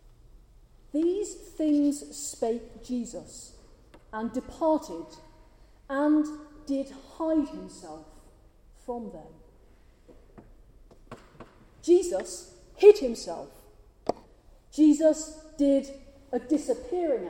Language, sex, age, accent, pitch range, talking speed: English, female, 40-59, British, 225-305 Hz, 65 wpm